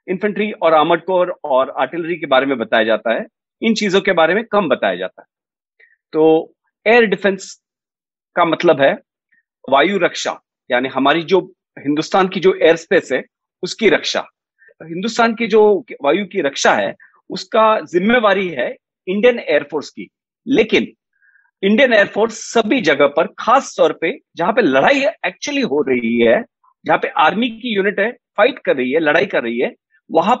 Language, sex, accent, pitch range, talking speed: Hindi, male, native, 180-240 Hz, 165 wpm